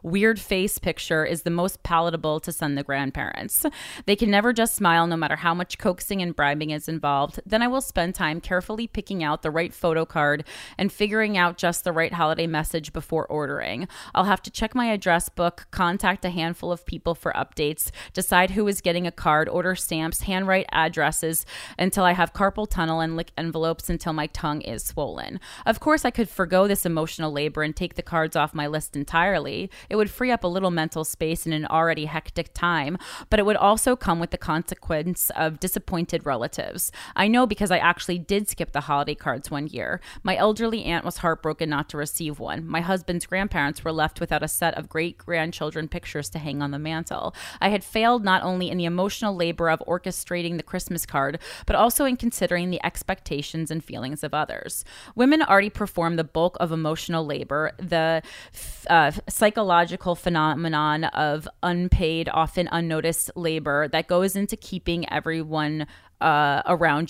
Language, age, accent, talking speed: English, 30-49, American, 185 wpm